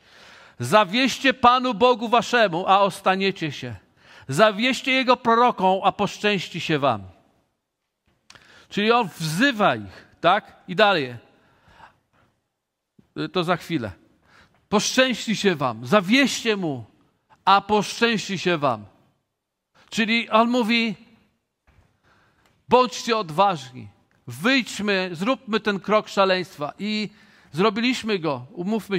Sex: male